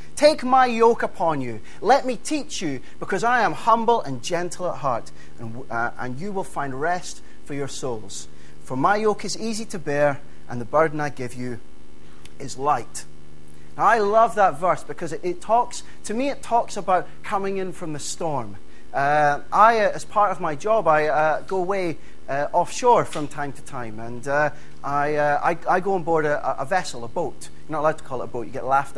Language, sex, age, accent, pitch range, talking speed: English, male, 30-49, British, 135-200 Hz, 215 wpm